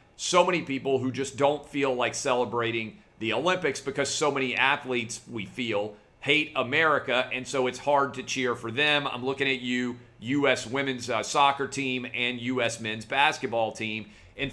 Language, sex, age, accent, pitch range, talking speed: English, male, 40-59, American, 115-135 Hz, 175 wpm